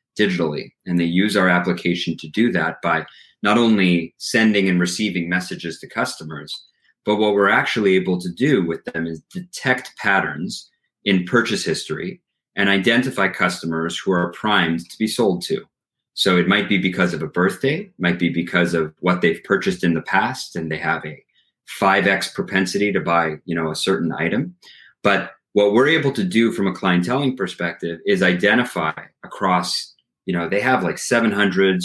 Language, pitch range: English, 85-115 Hz